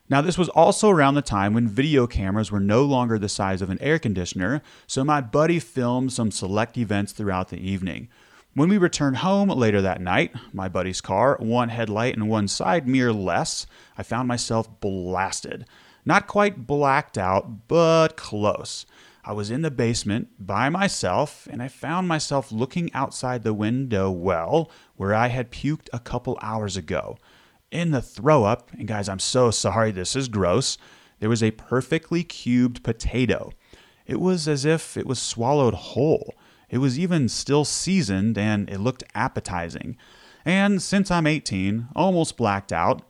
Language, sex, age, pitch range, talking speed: English, male, 30-49, 105-145 Hz, 170 wpm